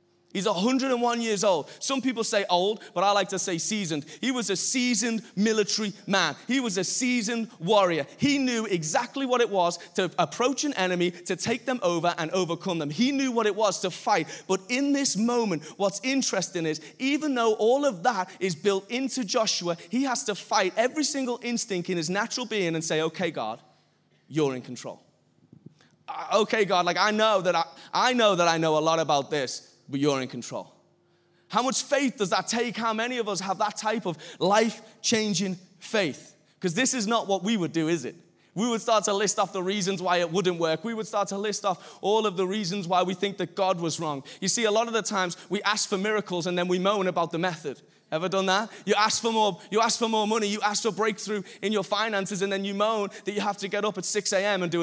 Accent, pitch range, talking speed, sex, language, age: British, 180-225 Hz, 230 wpm, male, English, 30-49